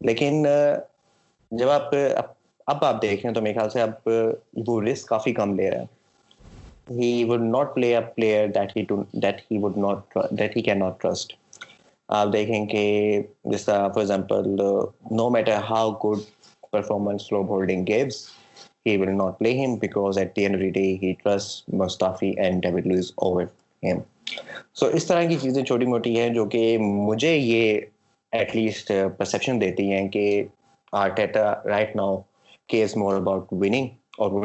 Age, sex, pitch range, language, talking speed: 20-39, male, 95-110 Hz, Urdu, 120 wpm